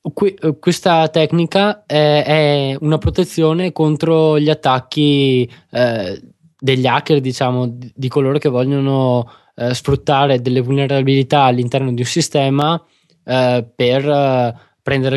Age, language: 20-39, Italian